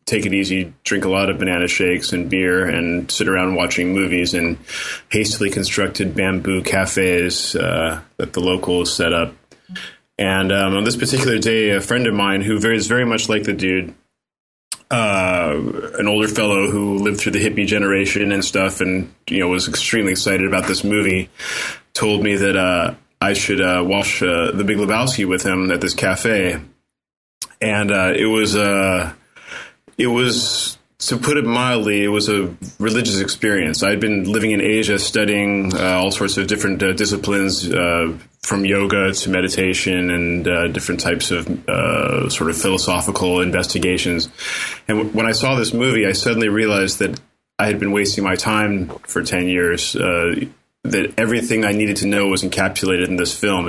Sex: male